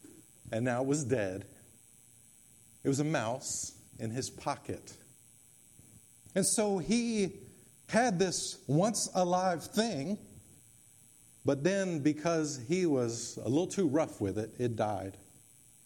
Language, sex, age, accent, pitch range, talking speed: English, male, 50-69, American, 125-205 Hz, 125 wpm